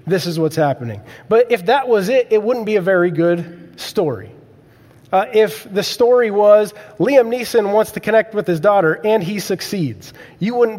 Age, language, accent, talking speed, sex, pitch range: 30-49, English, American, 190 wpm, male, 165-220 Hz